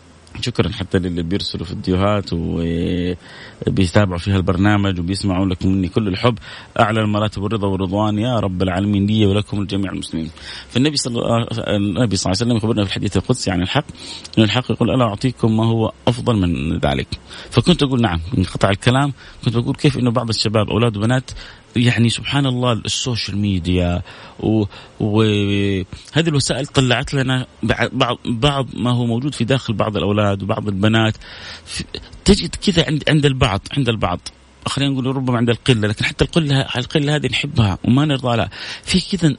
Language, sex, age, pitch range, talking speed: Arabic, male, 30-49, 100-130 Hz, 160 wpm